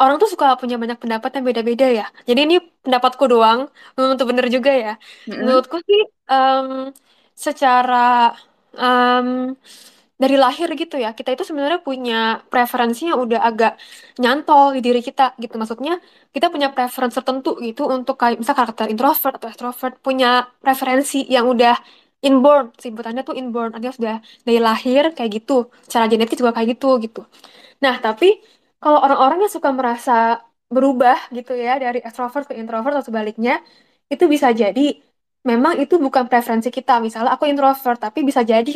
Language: Indonesian